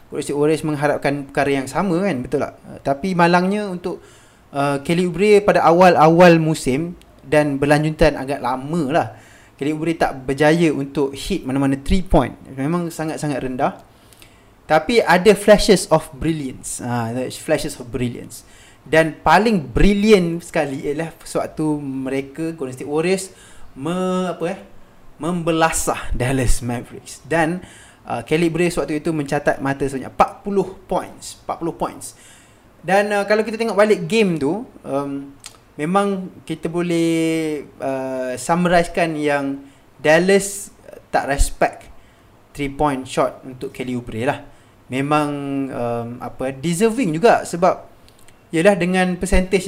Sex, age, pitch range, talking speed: male, 20-39, 130-170 Hz, 130 wpm